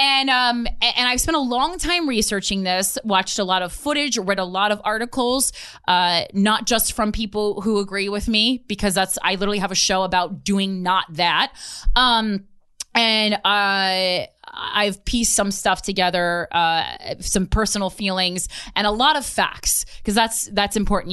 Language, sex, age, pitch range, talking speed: English, female, 20-39, 180-220 Hz, 175 wpm